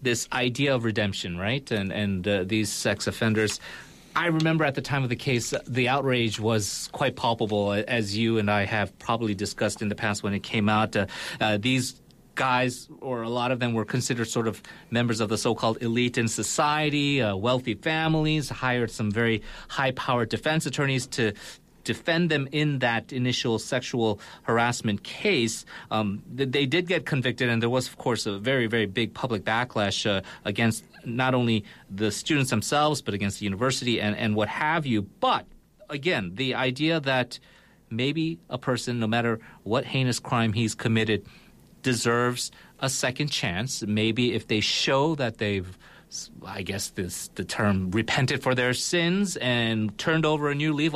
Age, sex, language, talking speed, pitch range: 40-59, male, English, 175 wpm, 110-140 Hz